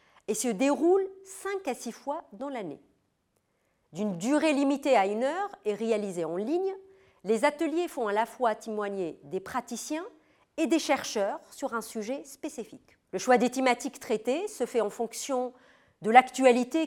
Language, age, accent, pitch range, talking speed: French, 40-59, French, 210-300 Hz, 165 wpm